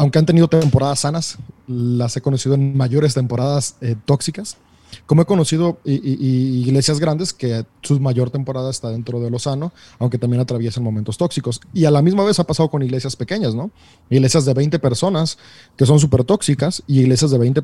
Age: 30-49